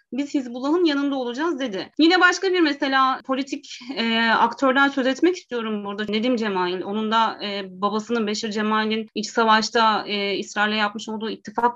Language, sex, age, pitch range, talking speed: Turkish, female, 30-49, 210-270 Hz, 160 wpm